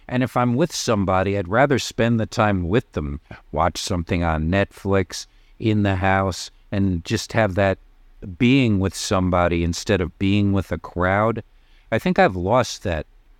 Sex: male